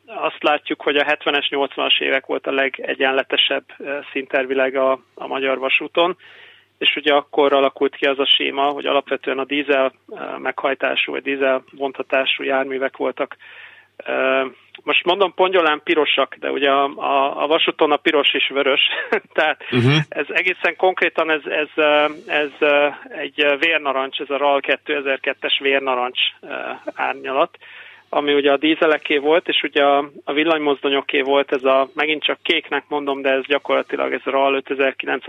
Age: 30-49